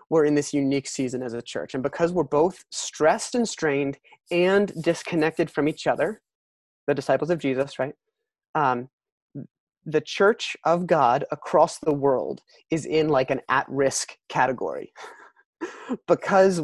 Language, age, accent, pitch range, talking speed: English, 30-49, American, 140-175 Hz, 145 wpm